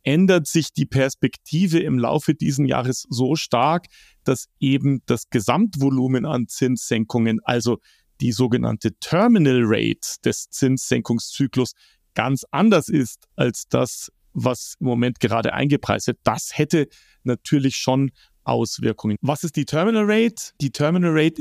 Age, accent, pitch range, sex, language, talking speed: 40-59, German, 125-160 Hz, male, German, 130 wpm